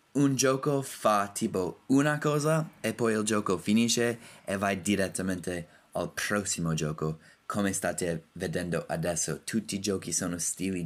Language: Italian